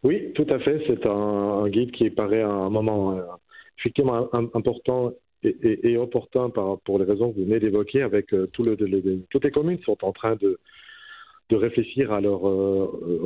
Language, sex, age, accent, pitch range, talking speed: French, male, 40-59, French, 100-125 Hz, 180 wpm